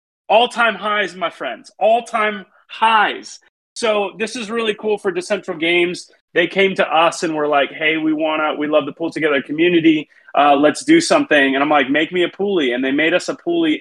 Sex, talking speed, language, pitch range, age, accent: male, 225 wpm, English, 150-215 Hz, 30-49, American